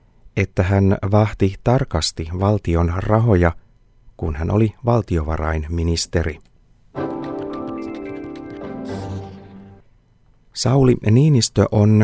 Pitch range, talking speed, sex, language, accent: 90-115 Hz, 65 wpm, male, Finnish, native